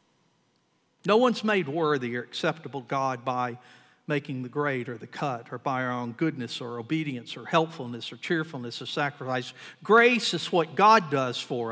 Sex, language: male, English